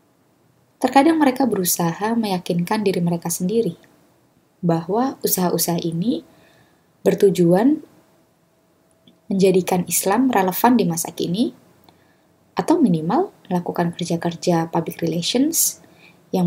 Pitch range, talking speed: 165-205 Hz, 85 wpm